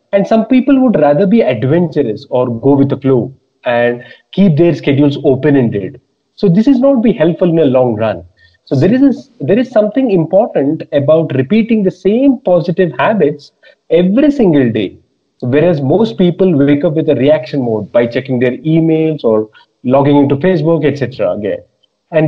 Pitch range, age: 145-215 Hz, 30-49